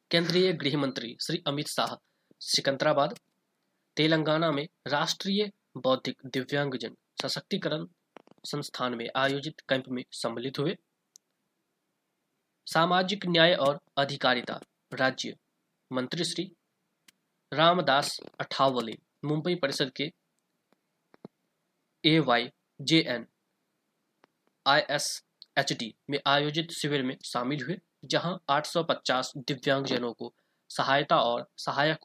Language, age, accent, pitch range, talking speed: Hindi, 20-39, native, 135-170 Hz, 100 wpm